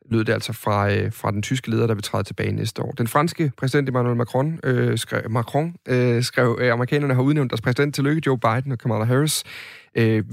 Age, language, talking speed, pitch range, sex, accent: 30-49, Danish, 220 wpm, 115-140 Hz, male, native